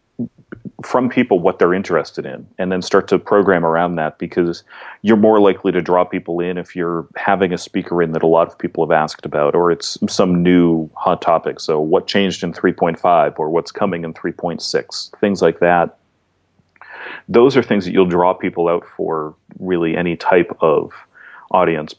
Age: 40-59